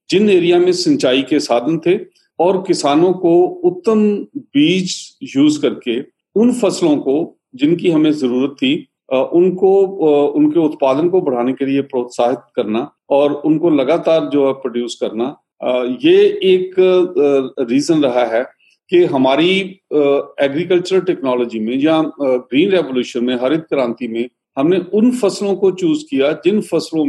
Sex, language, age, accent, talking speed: male, Hindi, 40-59, native, 135 wpm